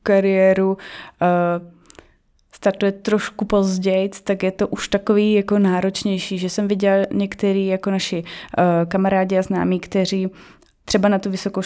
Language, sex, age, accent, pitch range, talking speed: Czech, female, 20-39, native, 190-210 Hz, 130 wpm